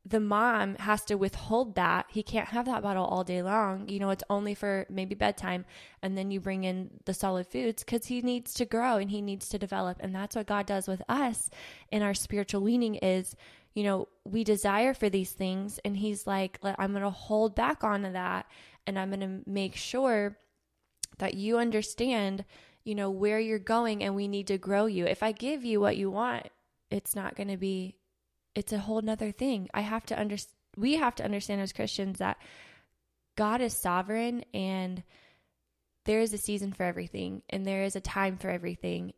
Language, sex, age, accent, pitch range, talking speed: English, female, 20-39, American, 190-215 Hz, 205 wpm